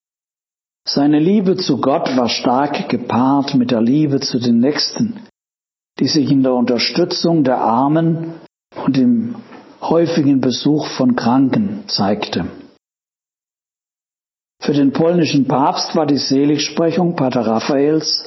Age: 60-79